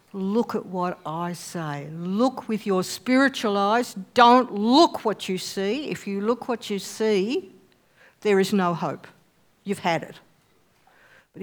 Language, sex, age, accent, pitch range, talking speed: English, female, 60-79, Australian, 180-215 Hz, 150 wpm